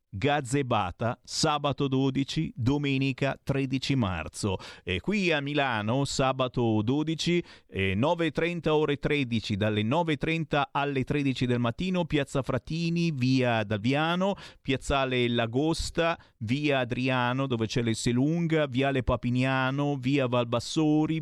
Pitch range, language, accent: 120-150 Hz, Italian, native